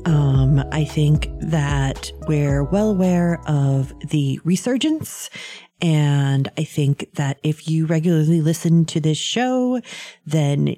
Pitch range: 145-185 Hz